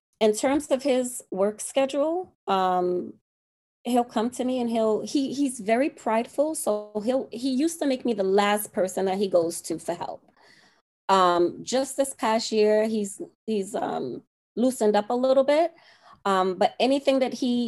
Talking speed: 165 wpm